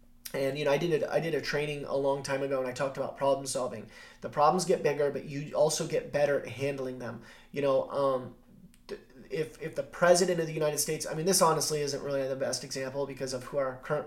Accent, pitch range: American, 140-165 Hz